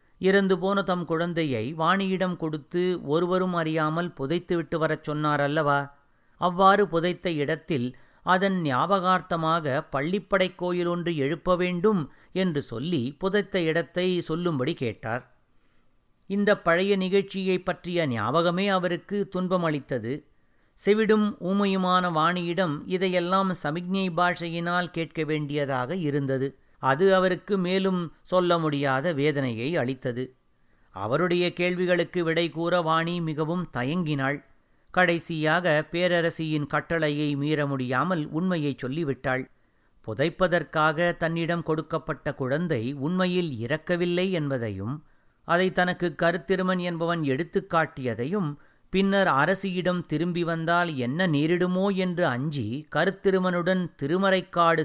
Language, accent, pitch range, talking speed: Tamil, native, 150-180 Hz, 90 wpm